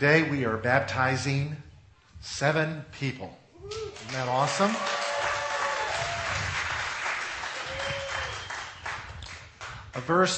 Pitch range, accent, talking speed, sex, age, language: 115-150 Hz, American, 65 wpm, male, 50-69, English